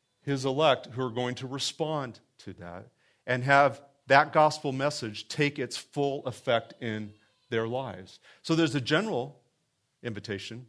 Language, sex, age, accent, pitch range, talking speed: English, male, 40-59, American, 110-150 Hz, 145 wpm